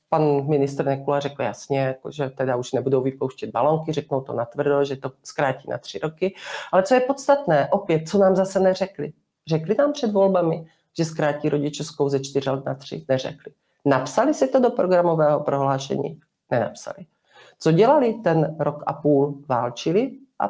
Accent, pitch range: native, 140-170 Hz